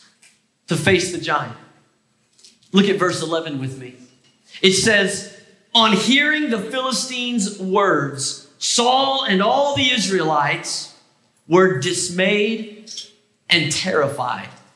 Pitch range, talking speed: 190-280 Hz, 105 wpm